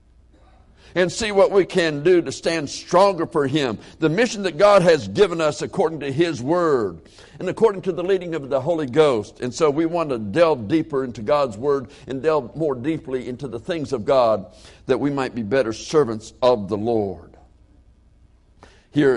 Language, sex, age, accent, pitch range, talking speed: English, male, 60-79, American, 100-155 Hz, 190 wpm